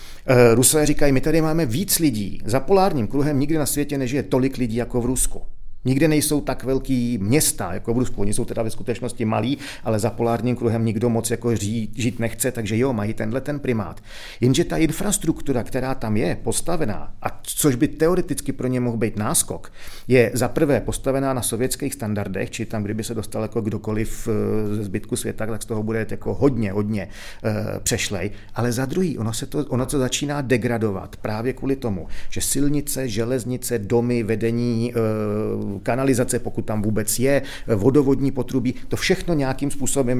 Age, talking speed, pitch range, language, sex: 40-59, 175 wpm, 105-130 Hz, Czech, male